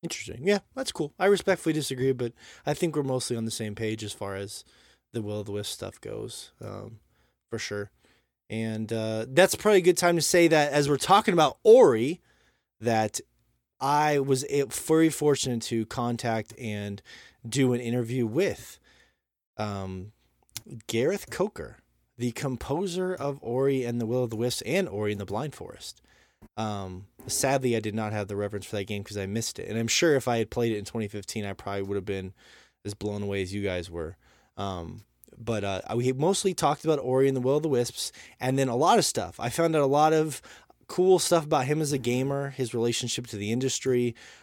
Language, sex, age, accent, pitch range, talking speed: English, male, 20-39, American, 105-140 Hz, 205 wpm